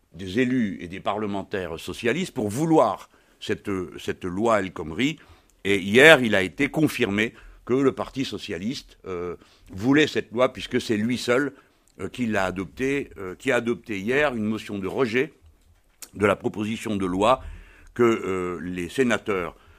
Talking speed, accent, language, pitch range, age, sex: 160 wpm, French, French, 90-125 Hz, 60-79, male